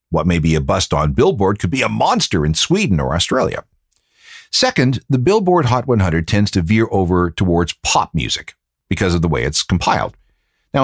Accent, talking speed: American, 190 wpm